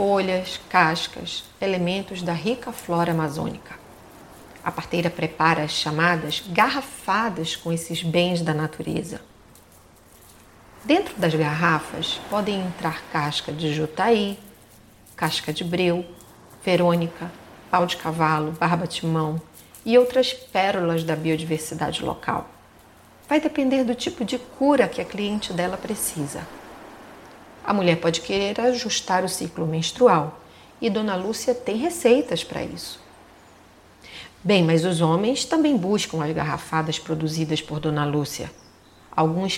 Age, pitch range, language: 40-59, 160-220 Hz, Portuguese